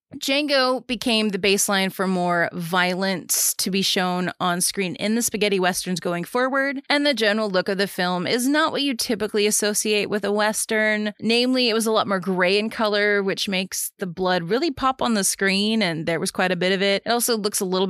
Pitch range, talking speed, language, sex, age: 175-215 Hz, 220 wpm, English, female, 20-39